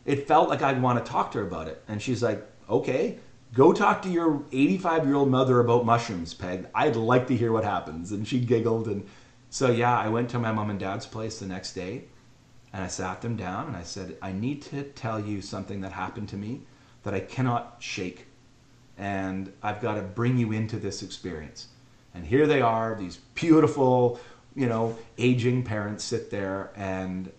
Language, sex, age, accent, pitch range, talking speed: English, male, 40-59, American, 100-125 Hz, 200 wpm